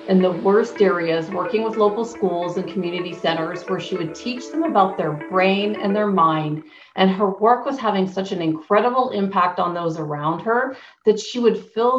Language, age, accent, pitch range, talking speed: English, 40-59, American, 170-210 Hz, 195 wpm